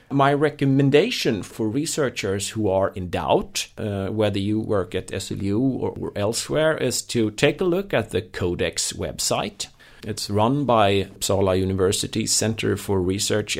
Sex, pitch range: male, 95-125 Hz